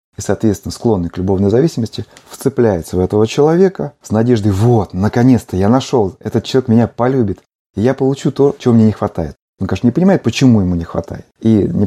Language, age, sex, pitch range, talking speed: Russian, 30-49, male, 100-125 Hz, 190 wpm